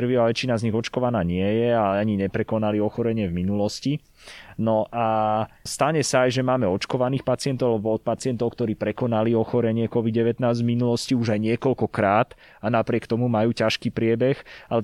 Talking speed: 160 wpm